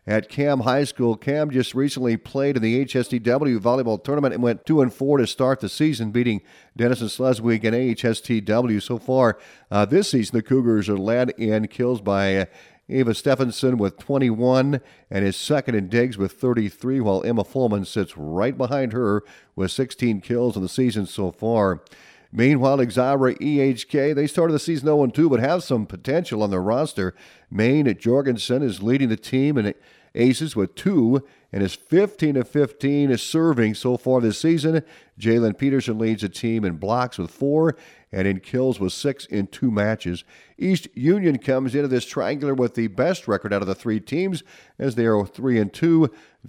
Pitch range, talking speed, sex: 110-135 Hz, 175 wpm, male